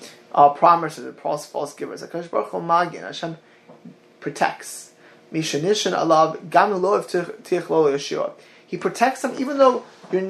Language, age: English, 20-39